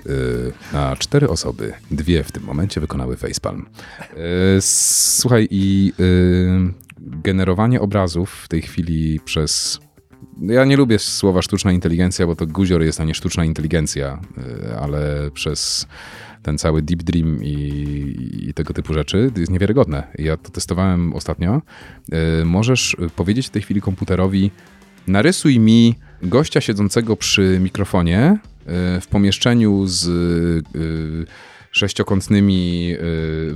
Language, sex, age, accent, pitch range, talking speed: Polish, male, 30-49, native, 85-105 Hz, 135 wpm